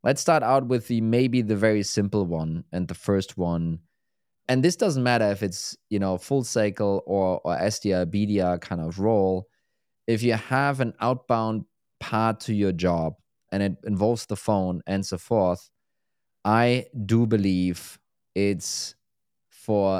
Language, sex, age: English, male, 20-39